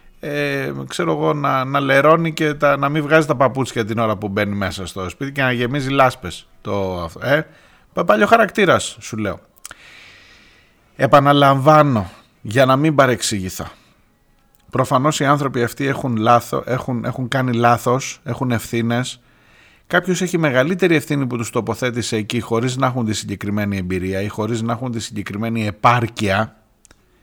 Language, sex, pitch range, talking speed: Greek, male, 110-145 Hz, 150 wpm